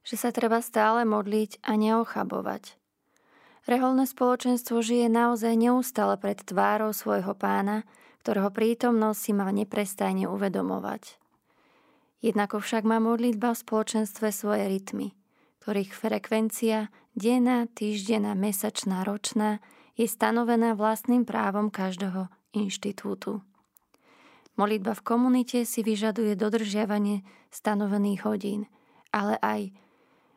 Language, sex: Slovak, female